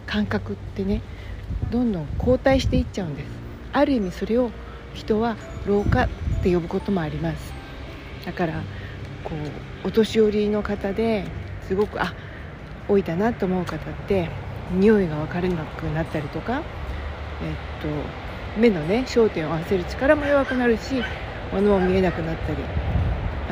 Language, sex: Japanese, female